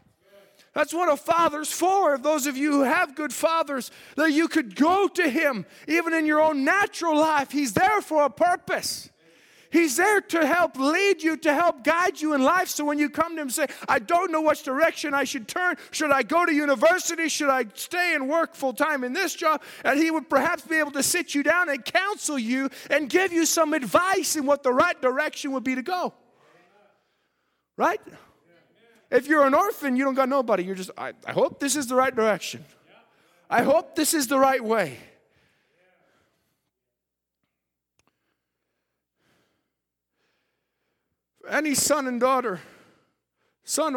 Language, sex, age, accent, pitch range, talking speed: English, male, 30-49, American, 245-320 Hz, 175 wpm